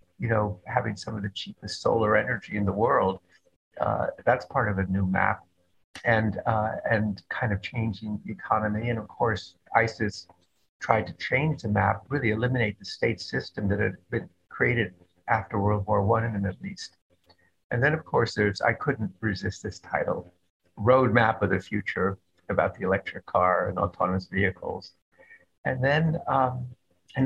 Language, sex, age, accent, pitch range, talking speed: English, male, 60-79, American, 95-115 Hz, 170 wpm